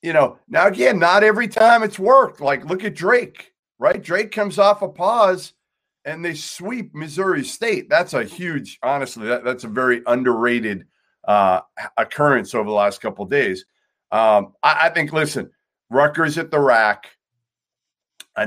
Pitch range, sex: 115-160 Hz, male